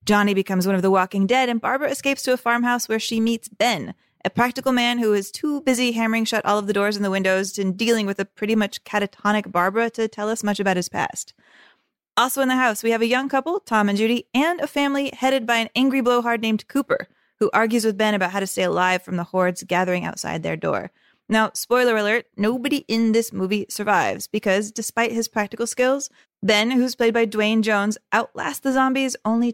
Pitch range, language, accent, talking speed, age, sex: 205-250 Hz, English, American, 220 wpm, 20-39, female